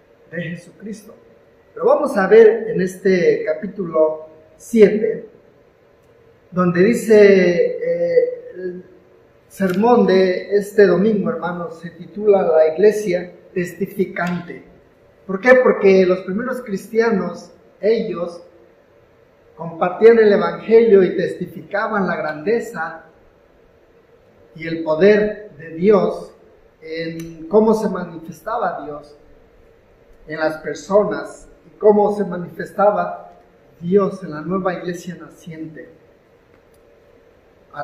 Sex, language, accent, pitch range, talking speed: male, English, Mexican, 165-215 Hz, 100 wpm